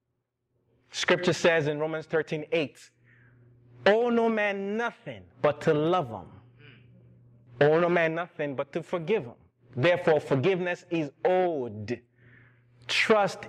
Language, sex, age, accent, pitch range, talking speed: English, male, 30-49, American, 120-180 Hz, 120 wpm